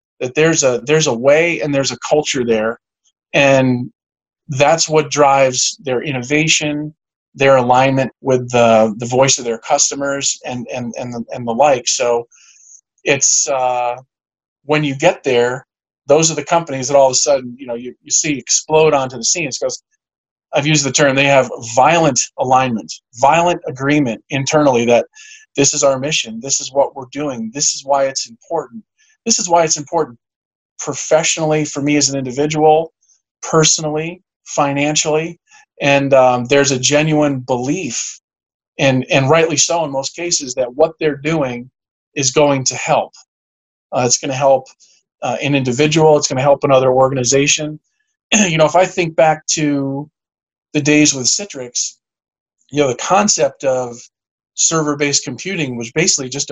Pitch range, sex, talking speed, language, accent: 130-155 Hz, male, 165 wpm, English, American